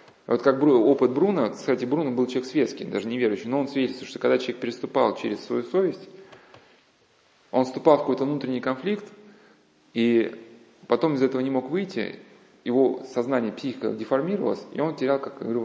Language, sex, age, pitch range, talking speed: Russian, male, 20-39, 120-145 Hz, 170 wpm